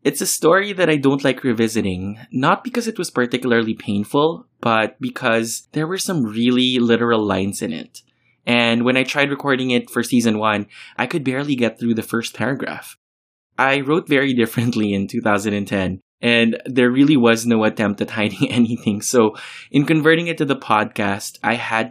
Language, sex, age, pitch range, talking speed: English, male, 20-39, 110-135 Hz, 180 wpm